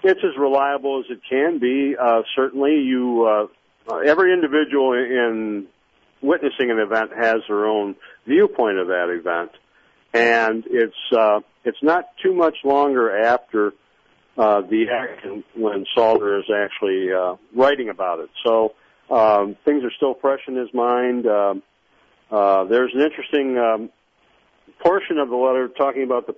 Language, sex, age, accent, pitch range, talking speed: English, male, 50-69, American, 110-135 Hz, 150 wpm